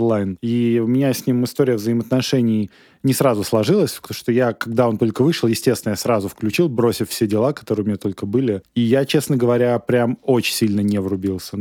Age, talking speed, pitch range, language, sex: 20-39, 200 wpm, 105-130 Hz, Russian, male